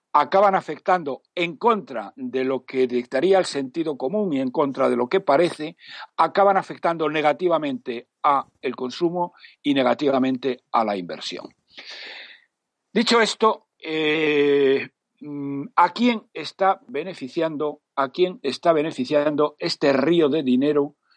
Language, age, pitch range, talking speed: Spanish, 60-79, 135-190 Hz, 120 wpm